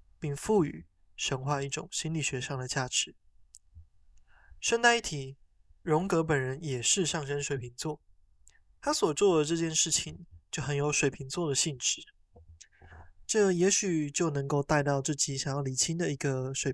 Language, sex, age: Chinese, male, 20-39